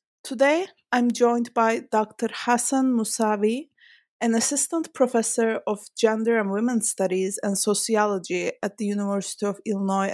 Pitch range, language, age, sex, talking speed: 205-260 Hz, English, 20-39, female, 130 wpm